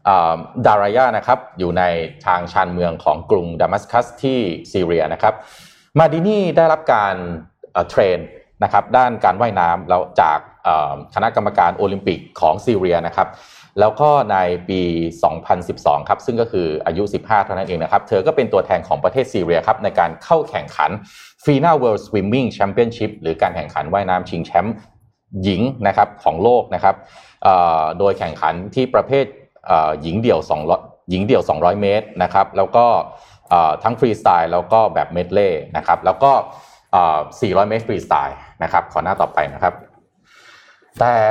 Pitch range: 90-120 Hz